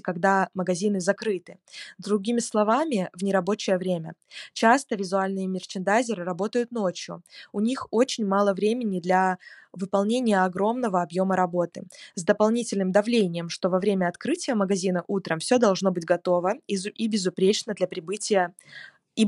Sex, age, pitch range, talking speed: female, 20-39, 185-220 Hz, 120 wpm